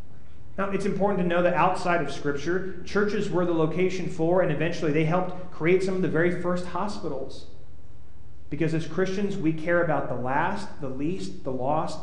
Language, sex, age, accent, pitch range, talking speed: English, male, 30-49, American, 155-205 Hz, 185 wpm